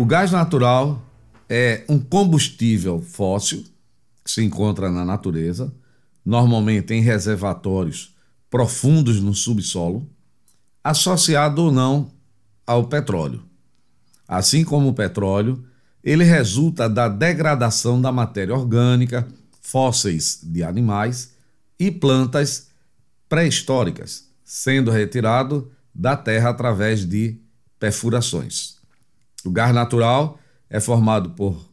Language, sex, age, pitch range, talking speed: Portuguese, male, 50-69, 110-140 Hz, 100 wpm